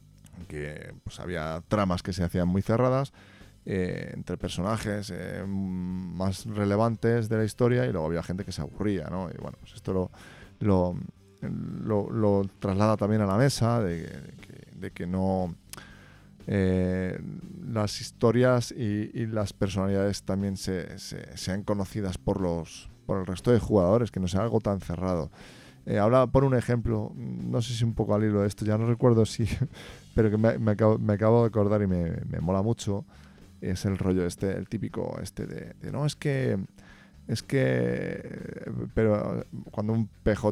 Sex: male